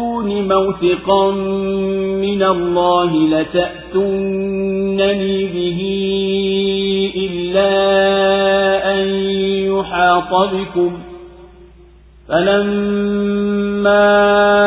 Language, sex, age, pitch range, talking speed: Swahili, male, 50-69, 175-195 Hz, 40 wpm